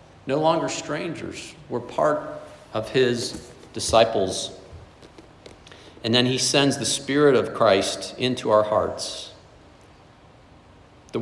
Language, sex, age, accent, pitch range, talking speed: English, male, 50-69, American, 105-125 Hz, 105 wpm